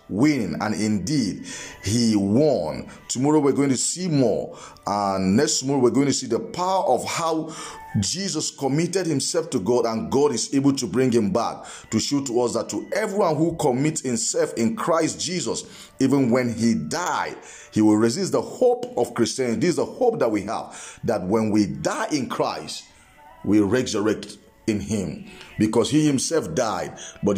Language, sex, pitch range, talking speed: English, male, 115-160 Hz, 180 wpm